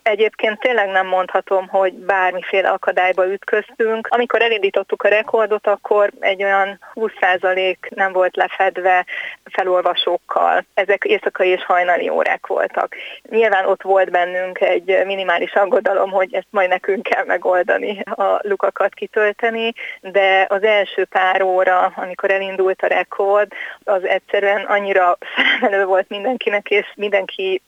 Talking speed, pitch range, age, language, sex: 130 wpm, 190-215 Hz, 30-49, Hungarian, female